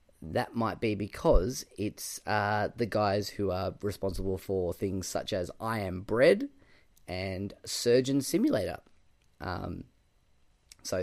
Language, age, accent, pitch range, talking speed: English, 20-39, Australian, 100-130 Hz, 125 wpm